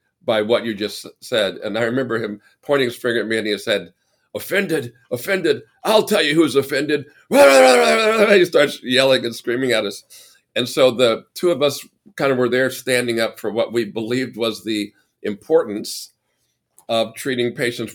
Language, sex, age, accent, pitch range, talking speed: English, male, 50-69, American, 110-140 Hz, 175 wpm